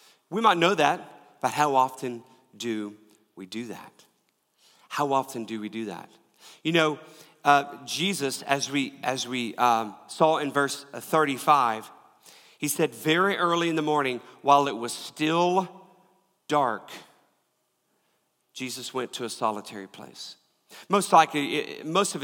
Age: 40-59